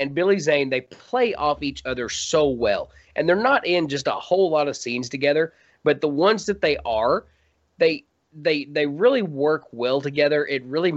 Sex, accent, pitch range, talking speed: male, American, 130-170 Hz, 195 wpm